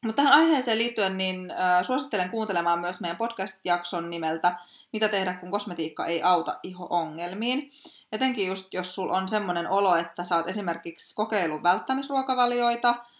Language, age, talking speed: Finnish, 20-39, 145 wpm